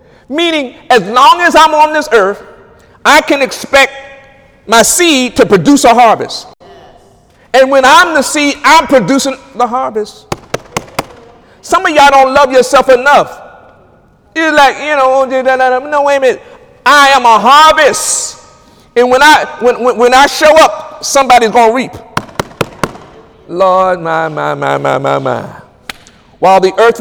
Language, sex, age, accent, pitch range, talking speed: English, male, 50-69, American, 220-280 Hz, 160 wpm